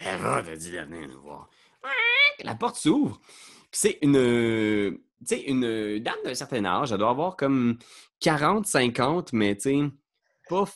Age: 20-39